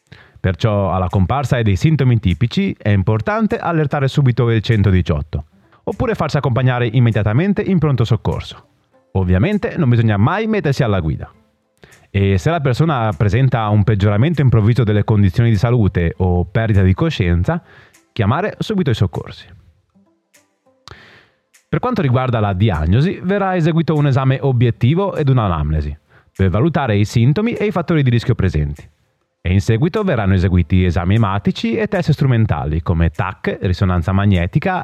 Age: 30-49